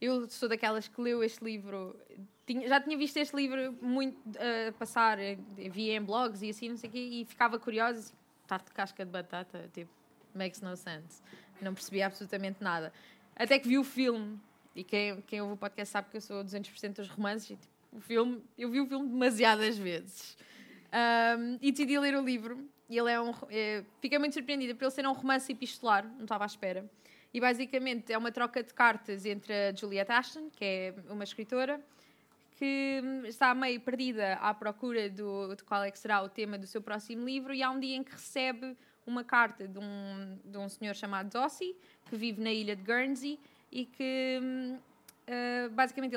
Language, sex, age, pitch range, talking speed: Portuguese, female, 20-39, 205-255 Hz, 200 wpm